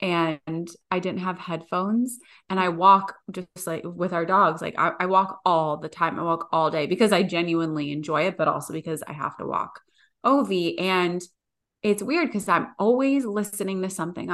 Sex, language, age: female, English, 20-39